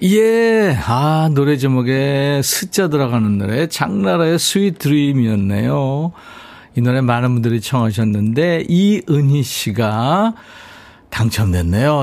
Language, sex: Korean, male